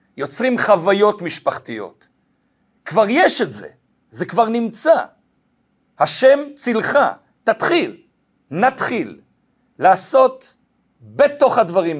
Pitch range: 155-235 Hz